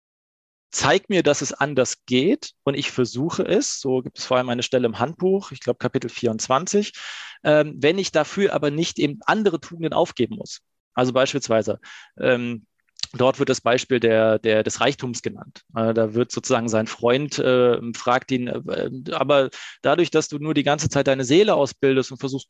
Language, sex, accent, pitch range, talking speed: German, male, German, 125-155 Hz, 180 wpm